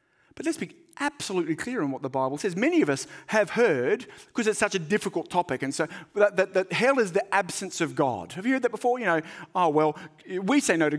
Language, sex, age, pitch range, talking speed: English, male, 40-59, 145-205 Hz, 245 wpm